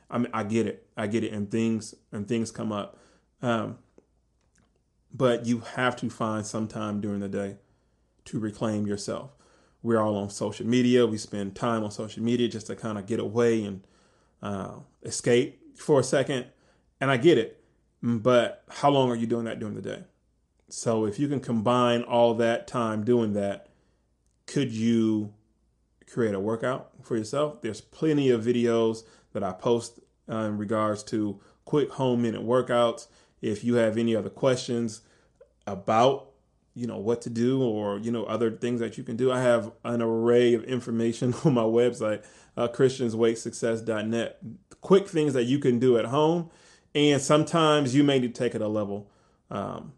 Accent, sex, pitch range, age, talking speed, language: American, male, 110-125 Hz, 30-49, 175 wpm, English